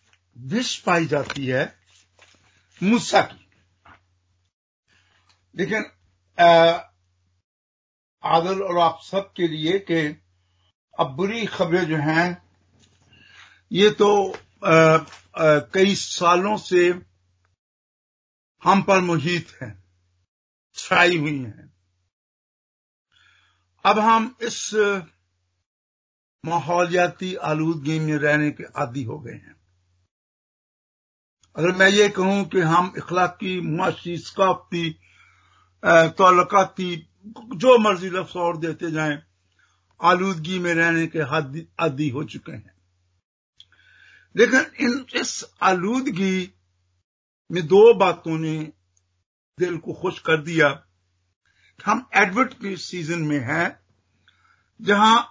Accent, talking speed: native, 95 wpm